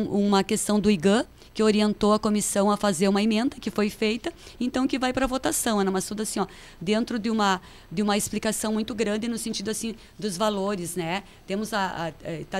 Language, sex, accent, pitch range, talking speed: Portuguese, female, Brazilian, 195-240 Hz, 205 wpm